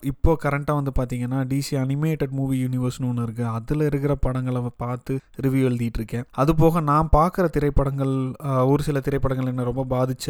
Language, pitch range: Tamil, 130-150 Hz